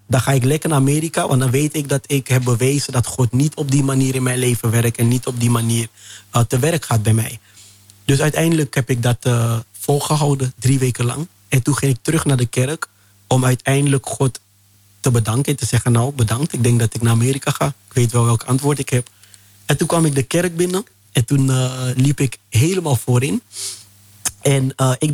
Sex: male